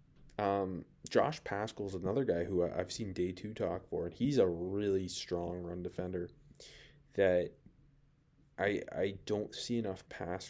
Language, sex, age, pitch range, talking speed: English, male, 20-39, 95-130 Hz, 160 wpm